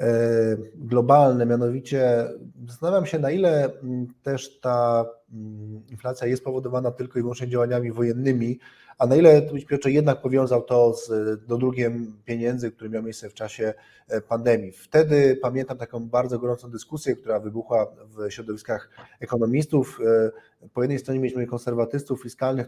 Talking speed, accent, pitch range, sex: 135 wpm, native, 115-135 Hz, male